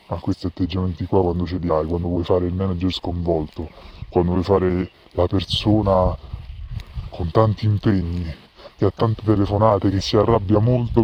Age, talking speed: 20-39, 165 wpm